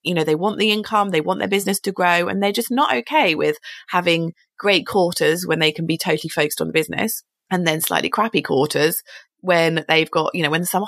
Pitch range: 155-185 Hz